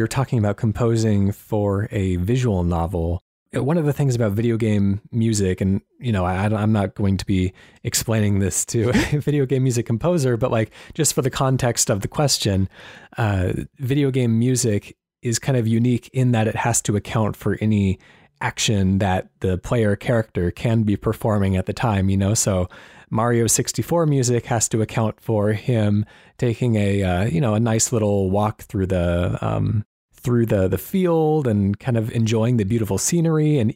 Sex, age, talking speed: male, 20-39, 185 wpm